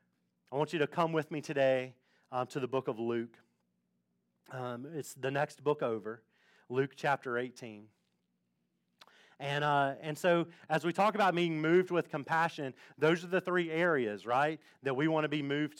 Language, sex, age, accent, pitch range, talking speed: English, male, 30-49, American, 135-170 Hz, 180 wpm